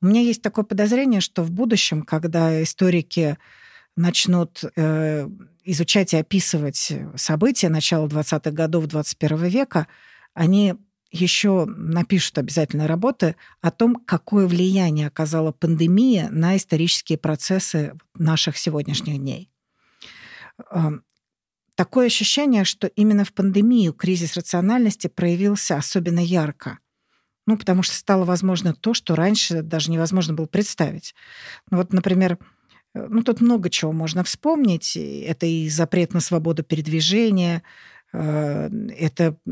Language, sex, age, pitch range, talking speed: Russian, female, 50-69, 160-195 Hz, 115 wpm